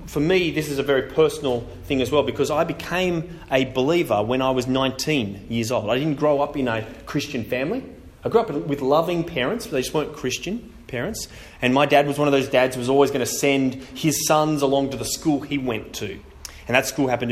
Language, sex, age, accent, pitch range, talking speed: English, male, 30-49, Australian, 115-150 Hz, 235 wpm